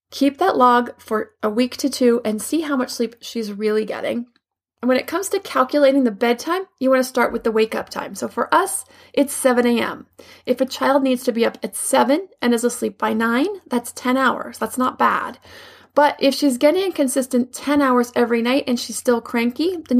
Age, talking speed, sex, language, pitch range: 20-39, 215 wpm, female, English, 235-275 Hz